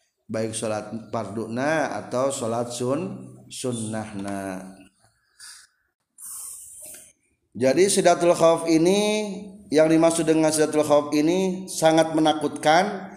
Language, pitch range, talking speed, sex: Indonesian, 140-200 Hz, 85 wpm, male